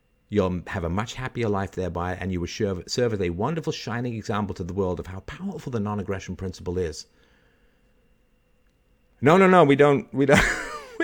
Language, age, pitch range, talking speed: English, 50-69, 95-130 Hz, 190 wpm